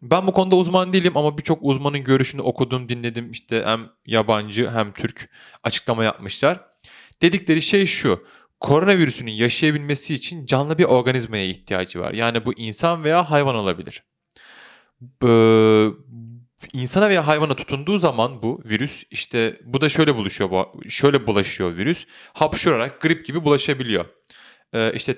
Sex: male